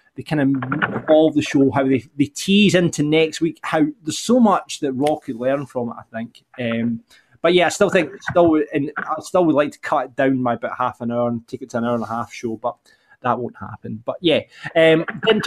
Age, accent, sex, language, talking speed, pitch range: 20-39, British, male, English, 250 wpm, 125-170 Hz